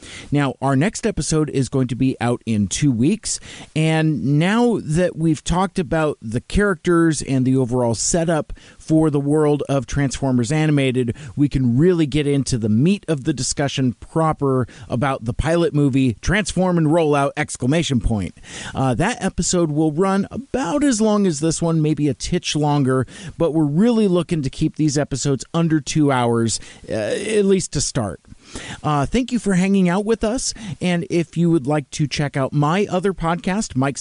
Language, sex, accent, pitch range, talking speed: English, male, American, 130-170 Hz, 175 wpm